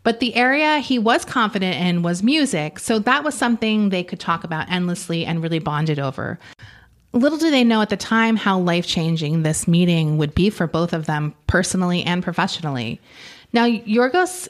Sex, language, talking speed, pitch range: female, English, 180 wpm, 165-215 Hz